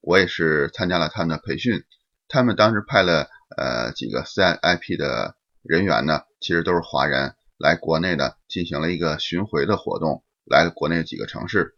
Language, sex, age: Chinese, male, 30-49